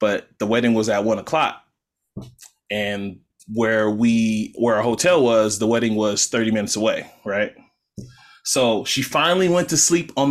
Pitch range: 110-145 Hz